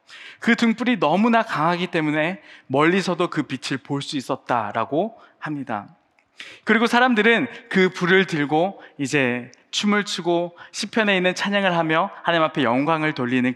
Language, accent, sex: Korean, native, male